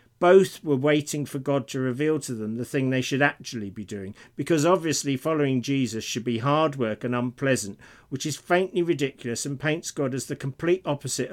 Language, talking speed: English, 195 wpm